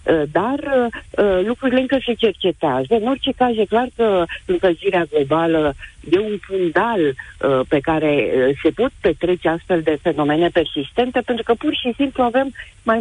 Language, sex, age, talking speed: Romanian, female, 50-69, 155 wpm